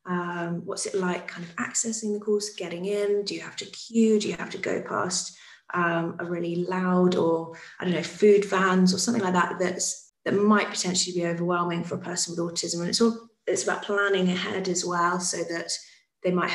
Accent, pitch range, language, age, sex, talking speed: British, 175-200 Hz, English, 20-39, female, 220 wpm